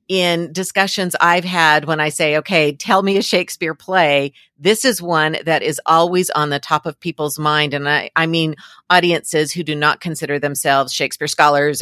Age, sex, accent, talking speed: 50-69, female, American, 190 wpm